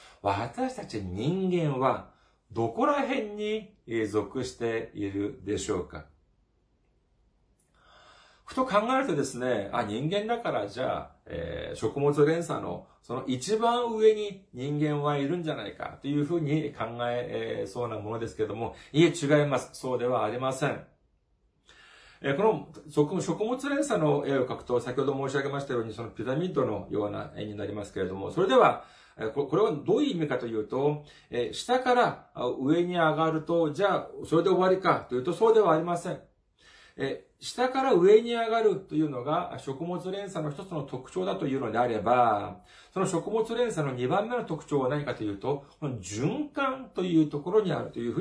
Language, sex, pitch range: Japanese, male, 125-195 Hz